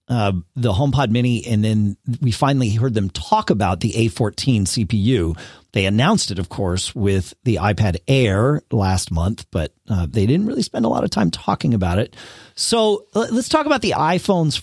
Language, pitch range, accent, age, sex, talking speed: English, 105-150 Hz, American, 40-59, male, 190 wpm